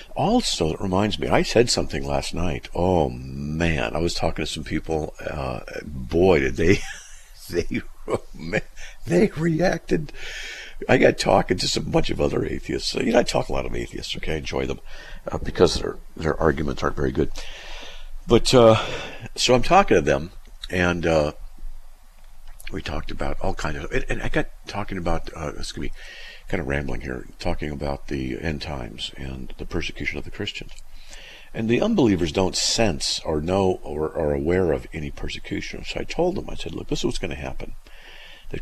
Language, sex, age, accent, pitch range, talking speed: English, male, 50-69, American, 75-95 Hz, 185 wpm